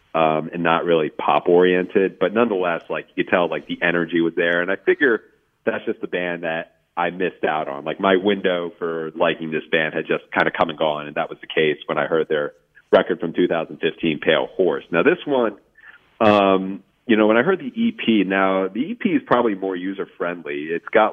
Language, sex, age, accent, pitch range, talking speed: English, male, 40-59, American, 80-115 Hz, 215 wpm